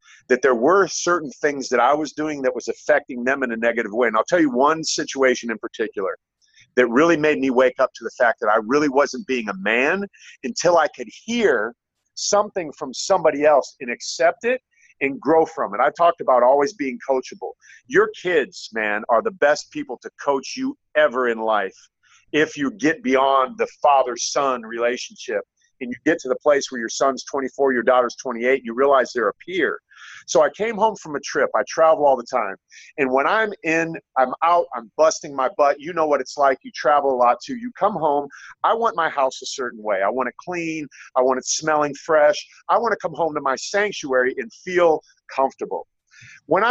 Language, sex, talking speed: English, male, 210 wpm